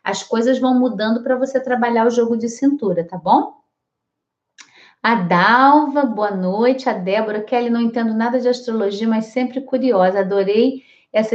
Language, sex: Portuguese, female